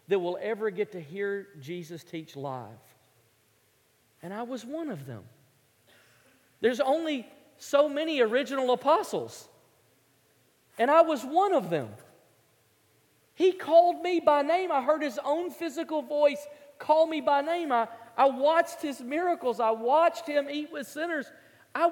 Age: 40-59